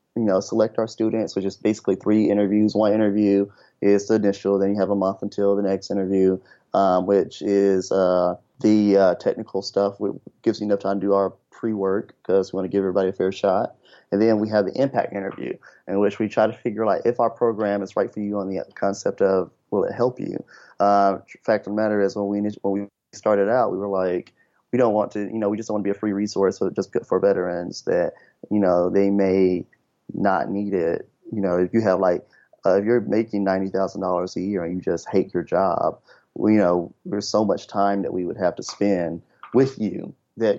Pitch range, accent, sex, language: 95-110 Hz, American, male, English